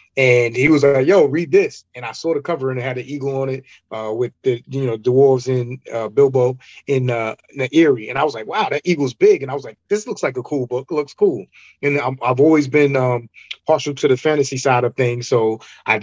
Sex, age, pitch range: male, 30-49, 120-145 Hz